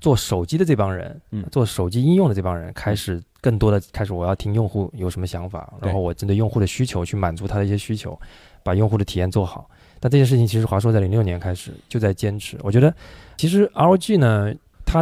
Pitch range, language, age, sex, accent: 100-130 Hz, Chinese, 20-39, male, native